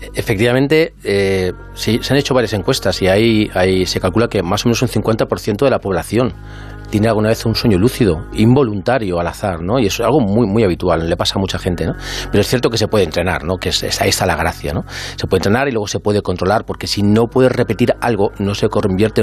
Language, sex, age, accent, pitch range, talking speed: Spanish, male, 40-59, Spanish, 95-120 Hz, 230 wpm